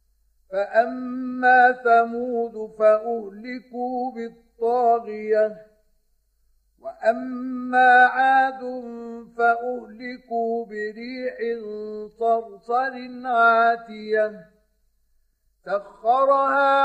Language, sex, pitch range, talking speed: Arabic, male, 215-250 Hz, 40 wpm